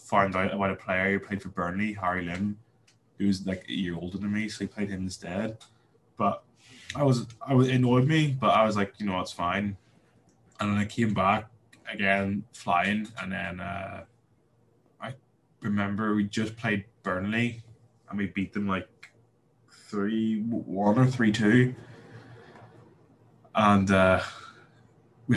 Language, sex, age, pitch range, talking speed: English, male, 20-39, 95-115 Hz, 160 wpm